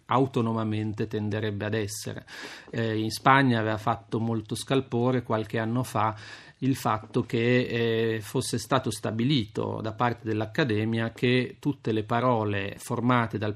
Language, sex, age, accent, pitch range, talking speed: Italian, male, 40-59, native, 110-130 Hz, 135 wpm